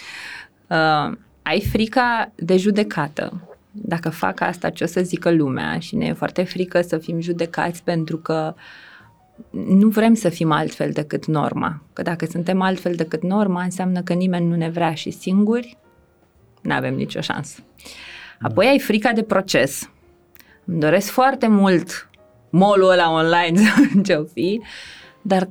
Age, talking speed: 20-39, 150 wpm